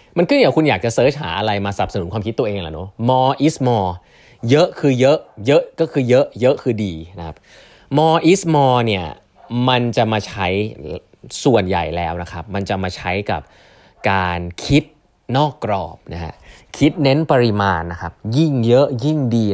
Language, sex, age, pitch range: Thai, male, 20-39, 95-135 Hz